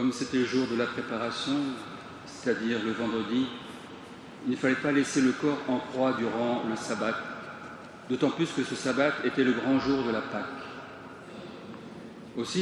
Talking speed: 165 wpm